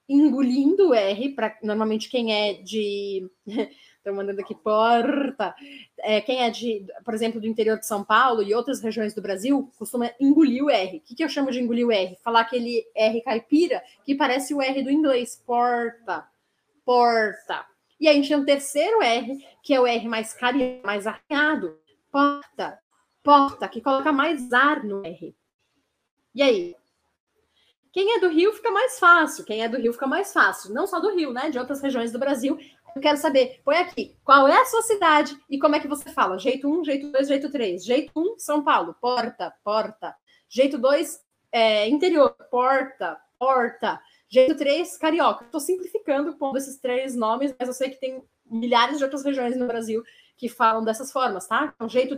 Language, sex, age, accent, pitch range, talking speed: Portuguese, female, 20-39, Brazilian, 230-290 Hz, 190 wpm